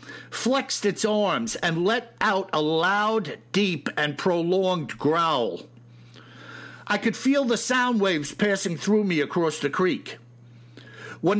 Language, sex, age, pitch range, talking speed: English, male, 60-79, 160-215 Hz, 130 wpm